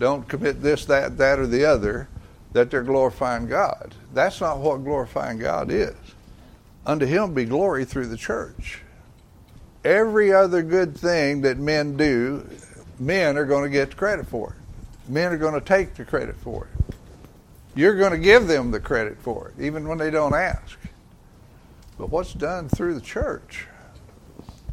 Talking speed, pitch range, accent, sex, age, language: 170 wpm, 115-160 Hz, American, male, 60-79, English